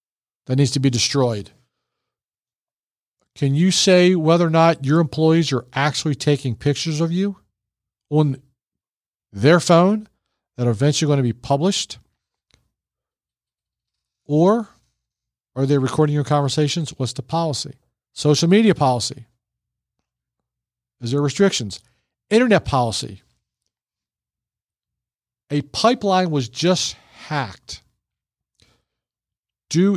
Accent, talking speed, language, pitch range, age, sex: American, 105 wpm, English, 120-165 Hz, 50-69, male